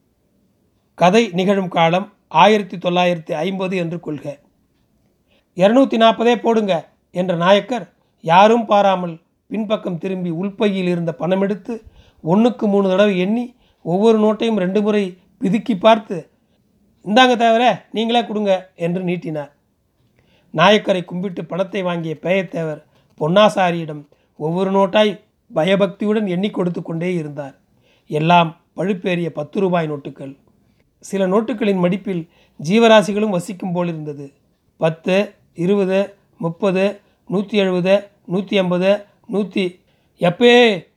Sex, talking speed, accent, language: male, 105 wpm, native, Tamil